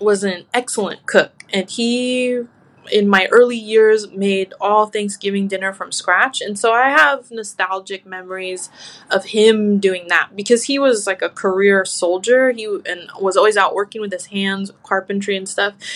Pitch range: 190-225 Hz